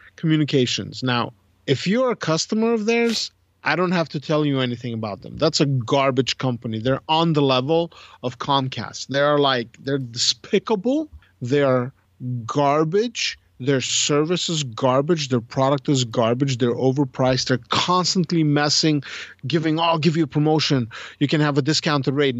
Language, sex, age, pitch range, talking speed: English, male, 40-59, 125-165 Hz, 160 wpm